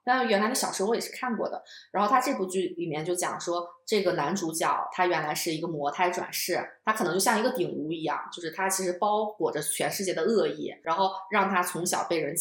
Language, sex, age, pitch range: Chinese, female, 20-39, 170-215 Hz